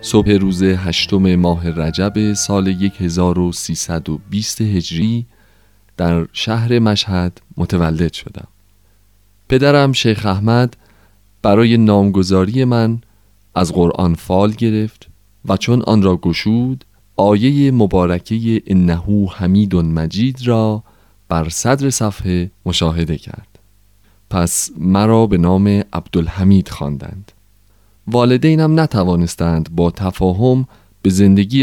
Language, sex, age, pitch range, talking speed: Persian, male, 30-49, 90-115 Hz, 100 wpm